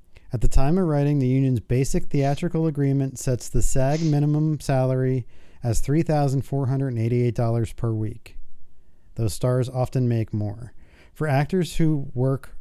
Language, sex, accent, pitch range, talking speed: English, male, American, 100-140 Hz, 135 wpm